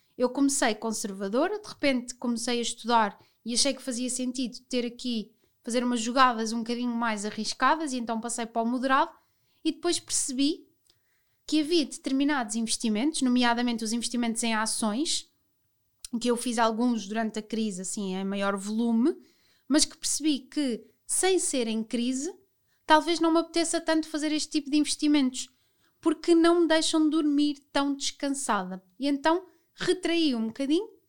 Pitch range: 230-290 Hz